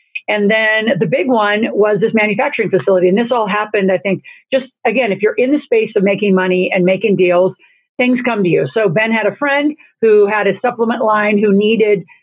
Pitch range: 190-225 Hz